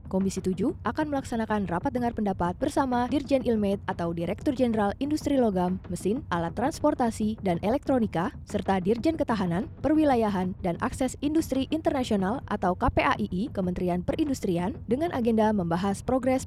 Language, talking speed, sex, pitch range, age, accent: Indonesian, 130 wpm, female, 195-270 Hz, 20-39, native